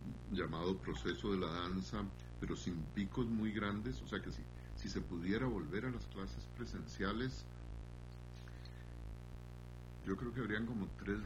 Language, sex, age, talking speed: Spanish, male, 50-69, 150 wpm